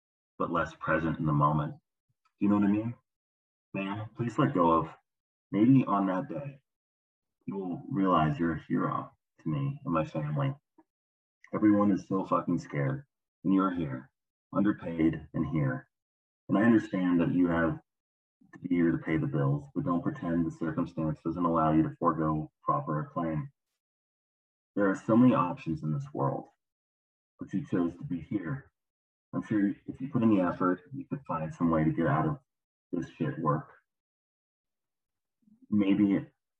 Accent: American